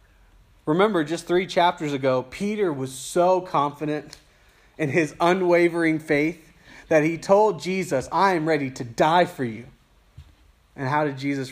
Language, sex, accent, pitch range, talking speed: English, male, American, 125-170 Hz, 145 wpm